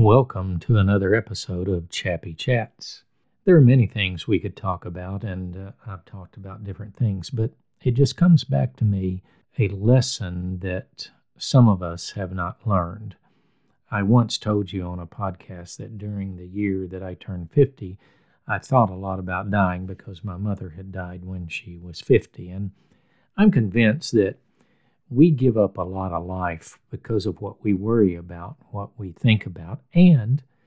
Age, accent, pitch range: 50-69, American, 95-125 Hz